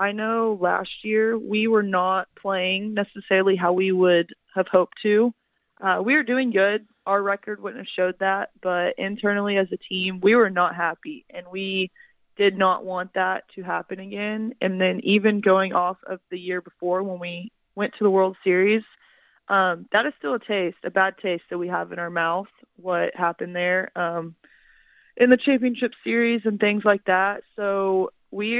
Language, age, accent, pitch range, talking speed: English, 20-39, American, 180-215 Hz, 185 wpm